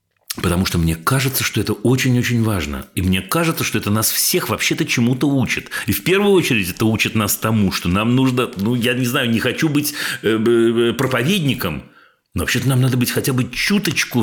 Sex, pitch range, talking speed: male, 100-135 Hz, 190 wpm